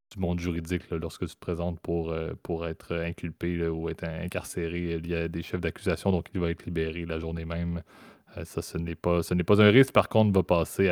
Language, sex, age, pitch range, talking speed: French, male, 20-39, 85-95 Hz, 245 wpm